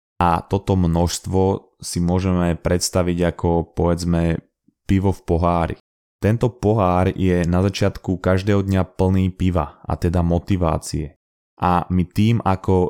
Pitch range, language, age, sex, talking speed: 85-95 Hz, Slovak, 20-39, male, 125 wpm